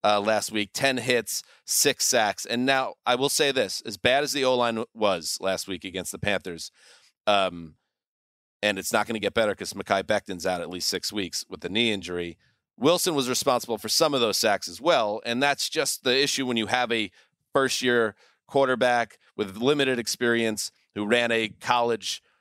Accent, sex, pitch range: American, male, 105-130 Hz